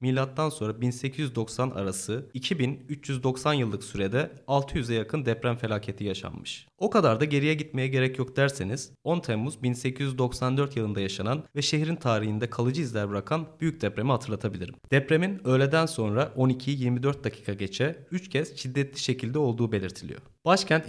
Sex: male